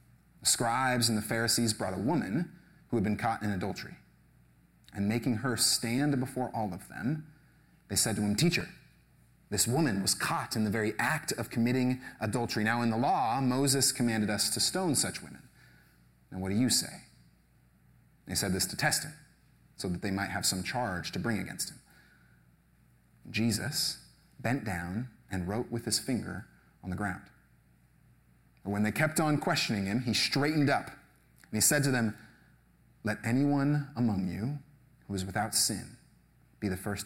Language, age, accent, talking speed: English, 30-49, American, 175 wpm